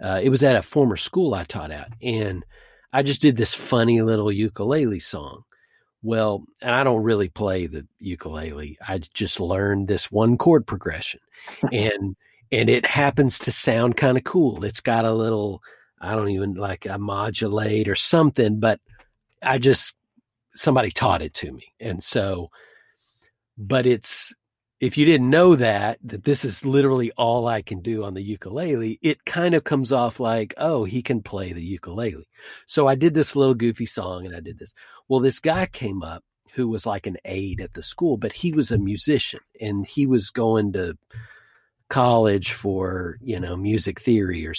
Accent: American